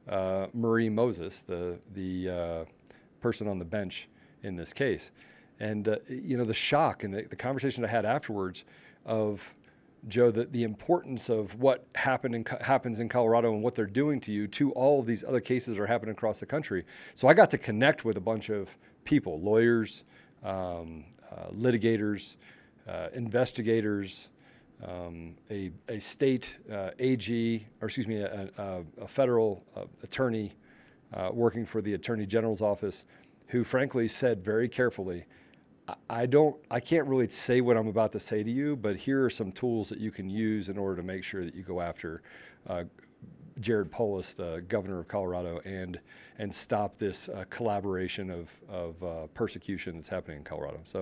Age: 40-59